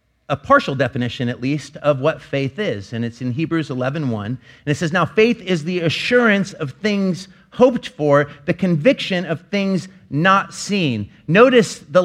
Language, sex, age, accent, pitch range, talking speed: English, male, 40-59, American, 145-190 Hz, 170 wpm